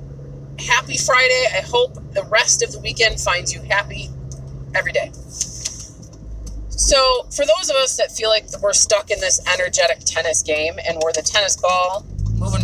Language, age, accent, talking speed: English, 30-49, American, 165 wpm